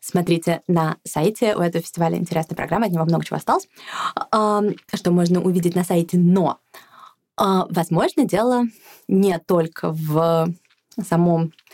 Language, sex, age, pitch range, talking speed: Russian, female, 20-39, 170-205 Hz, 130 wpm